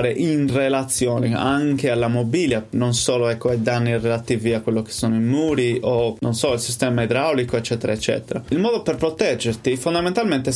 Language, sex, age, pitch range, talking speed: Italian, male, 20-39, 120-150 Hz, 170 wpm